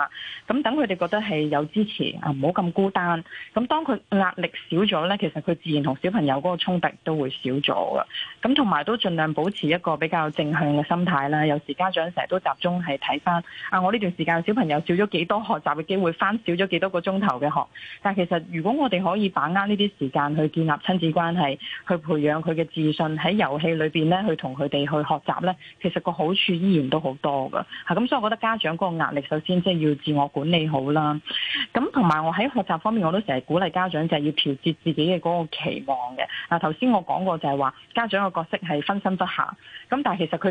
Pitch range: 150-195 Hz